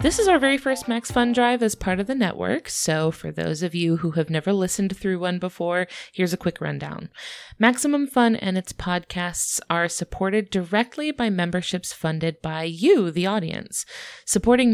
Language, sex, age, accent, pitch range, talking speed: English, female, 20-39, American, 170-225 Hz, 185 wpm